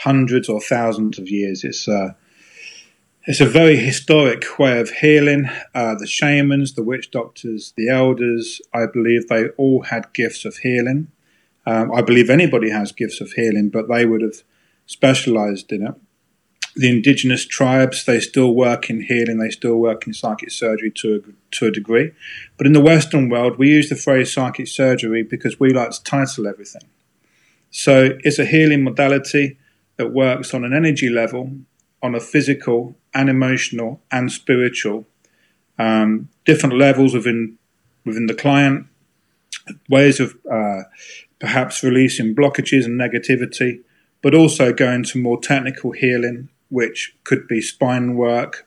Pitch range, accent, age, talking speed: 115-135 Hz, British, 30-49, 155 wpm